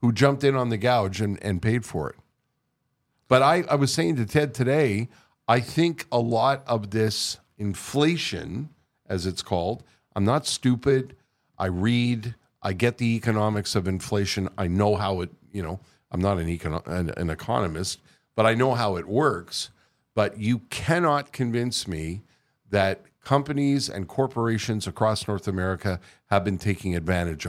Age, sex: 50-69, male